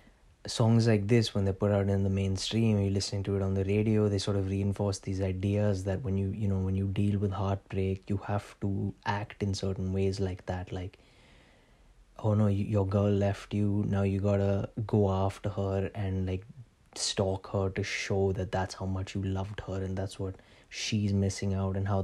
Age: 20-39